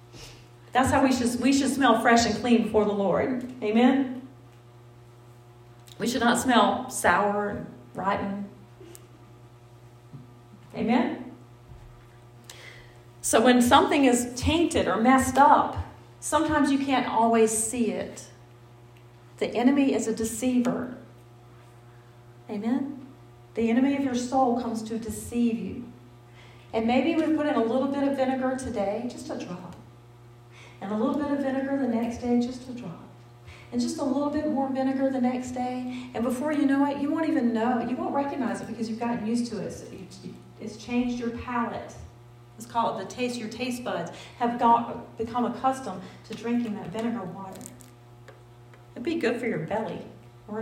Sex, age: female, 40-59